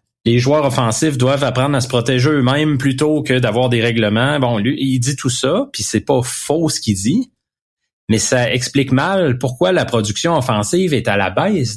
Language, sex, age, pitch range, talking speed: French, male, 30-49, 115-150 Hz, 200 wpm